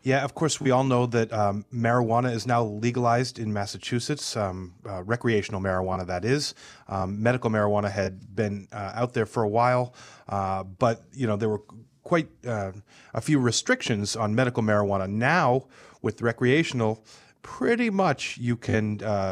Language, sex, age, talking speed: English, male, 40-59, 165 wpm